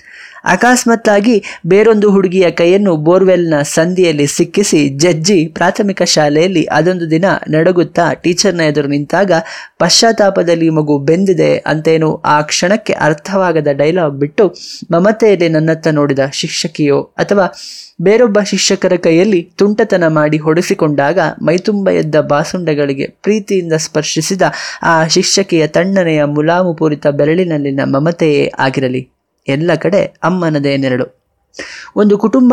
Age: 20-39